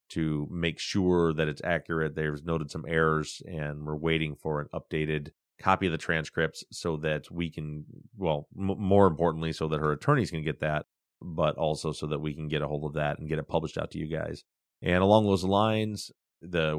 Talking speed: 215 wpm